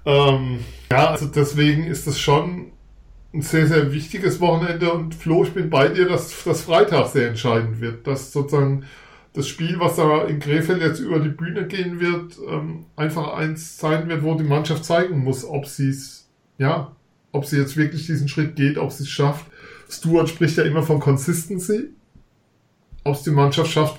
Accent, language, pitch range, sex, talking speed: German, German, 135-155 Hz, male, 185 wpm